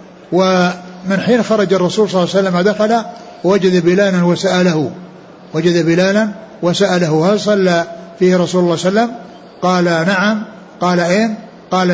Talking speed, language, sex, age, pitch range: 145 wpm, Arabic, male, 60-79, 180-200 Hz